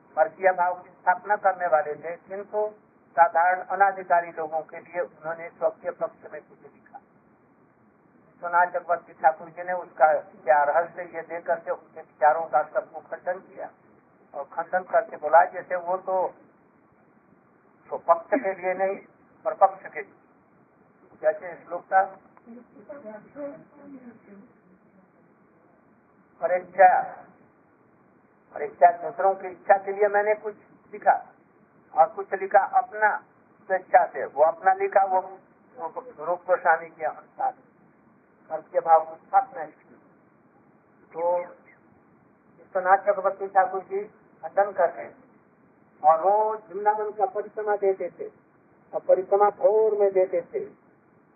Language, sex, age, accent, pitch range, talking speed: Hindi, male, 50-69, native, 170-210 Hz, 105 wpm